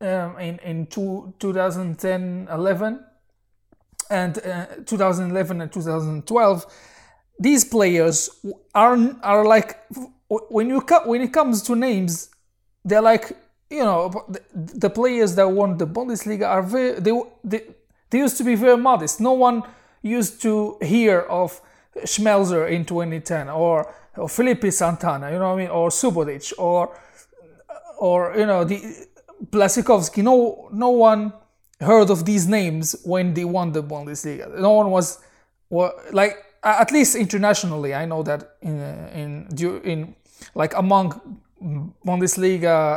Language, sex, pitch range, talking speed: English, male, 165-220 Hz, 150 wpm